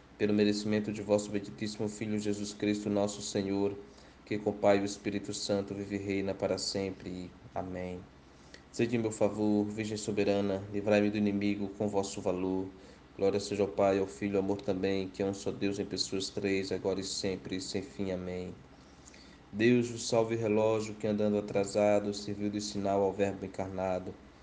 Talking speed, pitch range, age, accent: 175 wpm, 95-105 Hz, 20-39, Brazilian